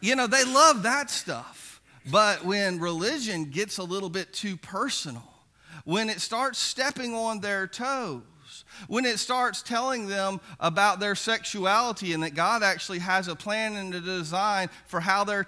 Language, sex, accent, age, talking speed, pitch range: English, male, American, 40-59, 165 wpm, 185-230 Hz